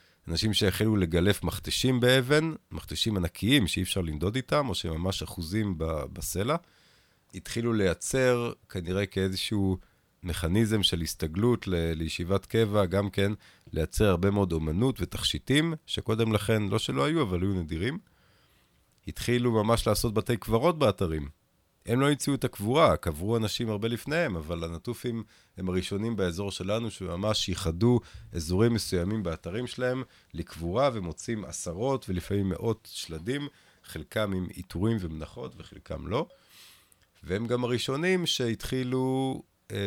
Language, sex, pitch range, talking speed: Hebrew, male, 90-115 Hz, 125 wpm